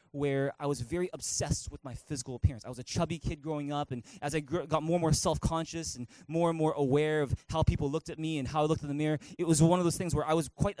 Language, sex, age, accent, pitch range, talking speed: English, male, 20-39, American, 135-170 Hz, 295 wpm